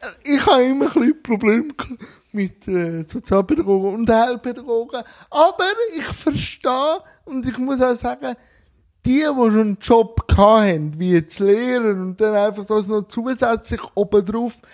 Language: German